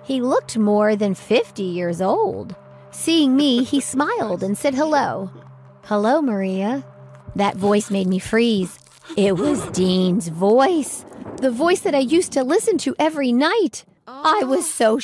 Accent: American